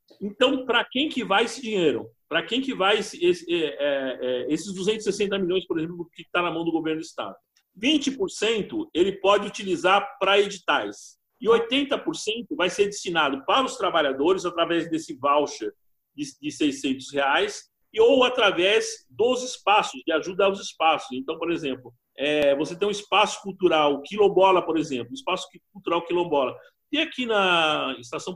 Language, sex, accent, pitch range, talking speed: Portuguese, male, Brazilian, 165-275 Hz, 150 wpm